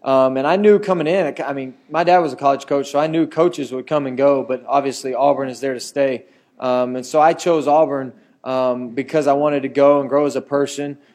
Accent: American